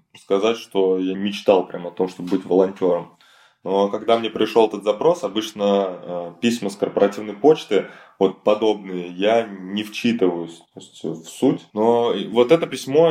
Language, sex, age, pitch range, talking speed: Russian, male, 20-39, 95-110 Hz, 150 wpm